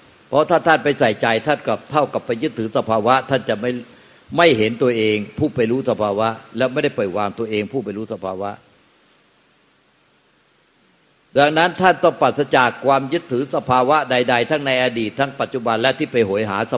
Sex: male